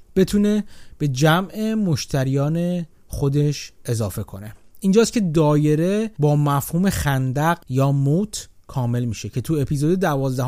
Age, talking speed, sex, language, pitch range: 30-49, 120 wpm, male, Persian, 130-185 Hz